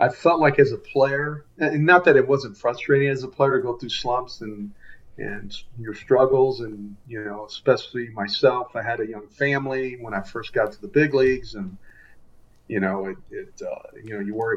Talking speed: 210 wpm